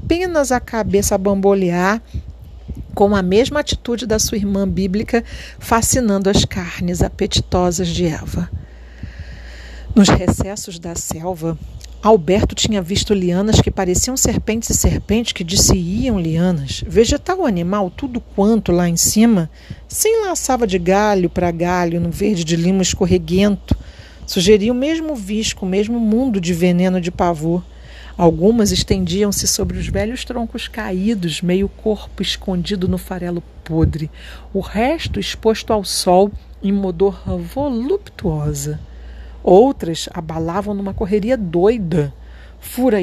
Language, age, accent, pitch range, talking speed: Portuguese, 40-59, Brazilian, 170-220 Hz, 125 wpm